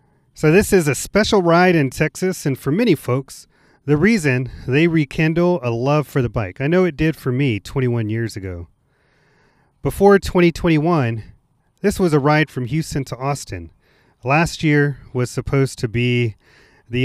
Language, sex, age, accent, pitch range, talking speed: English, male, 30-49, American, 120-155 Hz, 165 wpm